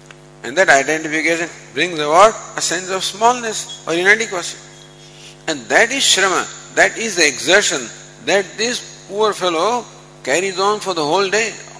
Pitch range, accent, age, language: 160-205 Hz, Indian, 50-69, English